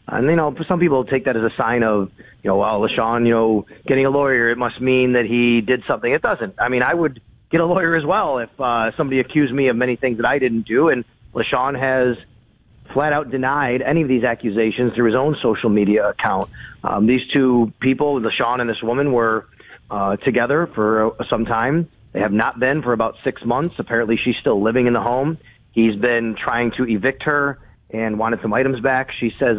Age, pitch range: 30-49, 115-140 Hz